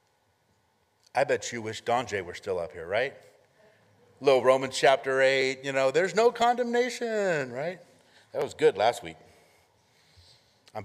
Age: 50-69